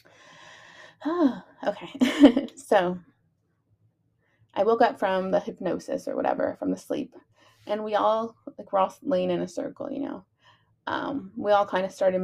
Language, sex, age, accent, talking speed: English, female, 20-39, American, 150 wpm